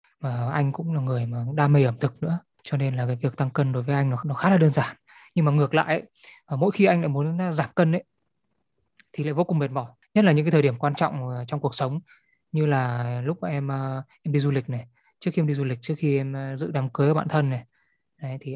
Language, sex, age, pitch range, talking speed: Vietnamese, male, 20-39, 130-155 Hz, 270 wpm